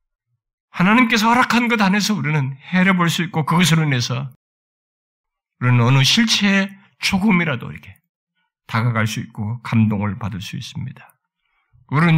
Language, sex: Korean, male